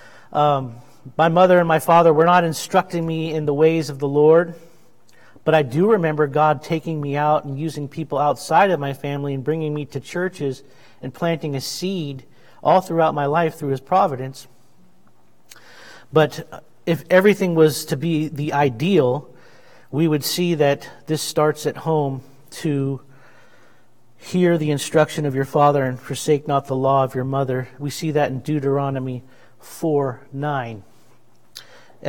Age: 40-59